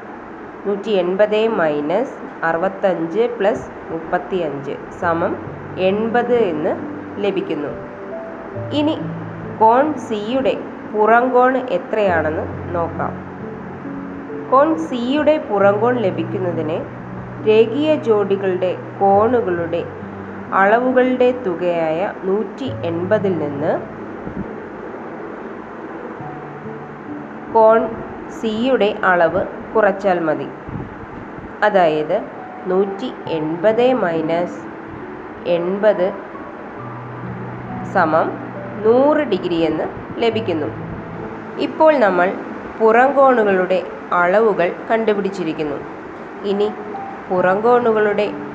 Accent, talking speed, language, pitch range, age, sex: native, 60 wpm, Malayalam, 175-230 Hz, 20-39, female